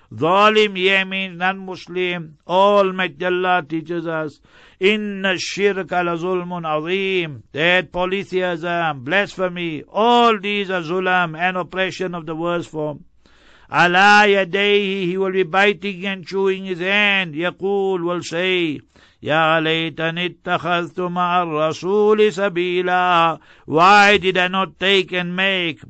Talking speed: 115 wpm